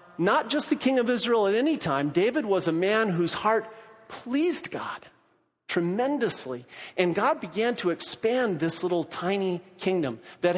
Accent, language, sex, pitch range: American, English, male, 150-205 Hz